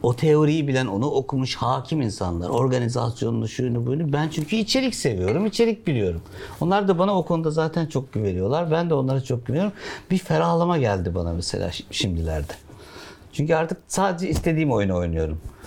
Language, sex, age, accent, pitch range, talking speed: Turkish, male, 60-79, native, 110-175 Hz, 155 wpm